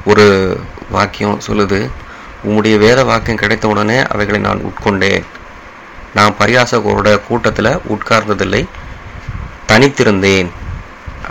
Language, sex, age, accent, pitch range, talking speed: Tamil, male, 30-49, native, 100-115 Hz, 80 wpm